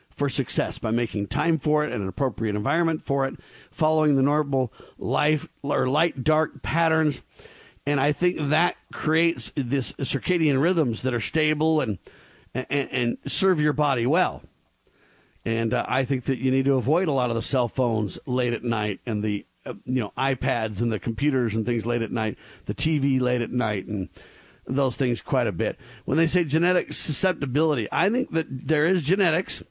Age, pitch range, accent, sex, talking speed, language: 50-69, 120-155 Hz, American, male, 185 wpm, English